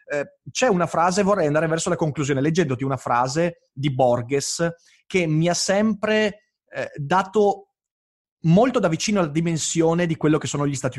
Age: 30-49